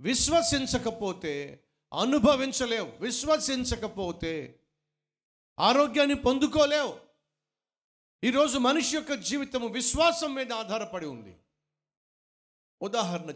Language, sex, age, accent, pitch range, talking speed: Telugu, male, 50-69, native, 130-190 Hz, 55 wpm